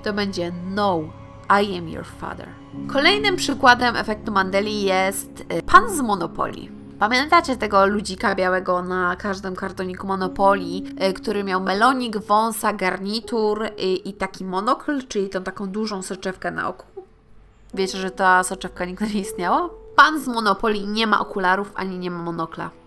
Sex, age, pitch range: female, 20-39, 185-230 Hz